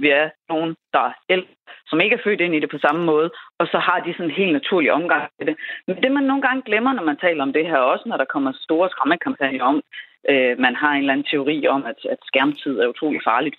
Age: 30-49